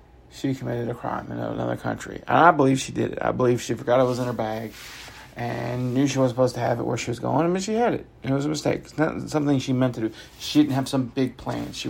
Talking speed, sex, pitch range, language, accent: 285 wpm, male, 120-155 Hz, English, American